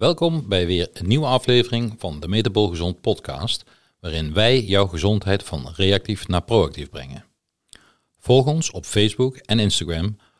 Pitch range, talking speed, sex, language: 90-120 Hz, 150 wpm, male, Dutch